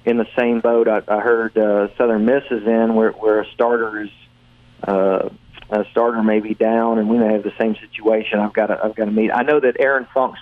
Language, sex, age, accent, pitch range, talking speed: English, male, 40-59, American, 105-120 Hz, 240 wpm